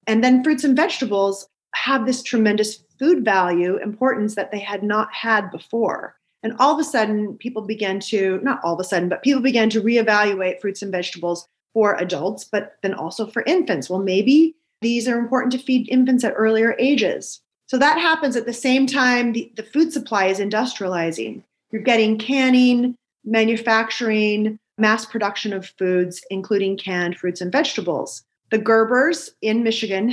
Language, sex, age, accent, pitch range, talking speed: English, female, 30-49, American, 195-245 Hz, 170 wpm